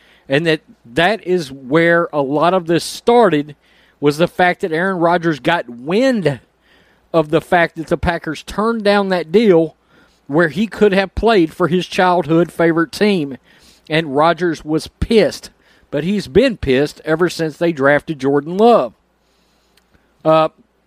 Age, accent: 40-59, American